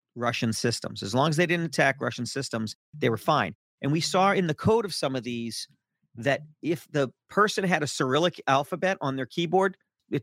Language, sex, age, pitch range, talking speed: English, male, 40-59, 115-160 Hz, 205 wpm